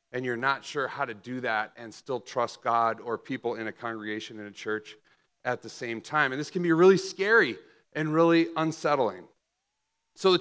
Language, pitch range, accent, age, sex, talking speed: English, 140-180 Hz, American, 40-59, male, 200 wpm